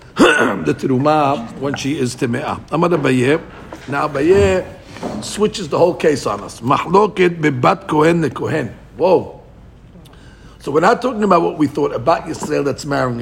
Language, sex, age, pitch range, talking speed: English, male, 60-79, 155-200 Hz, 145 wpm